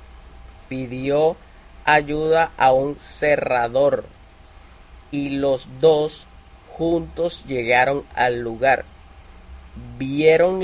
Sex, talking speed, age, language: male, 75 wpm, 30-49, Italian